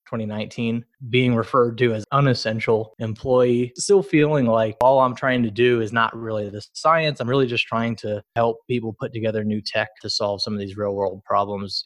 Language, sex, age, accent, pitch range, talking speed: English, male, 20-39, American, 105-120 Hz, 195 wpm